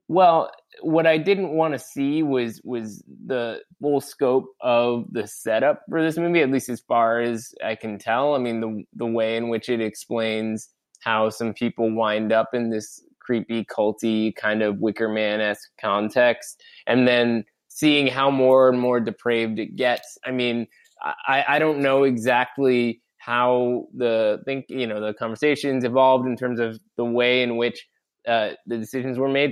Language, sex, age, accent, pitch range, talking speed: English, male, 20-39, American, 110-130 Hz, 175 wpm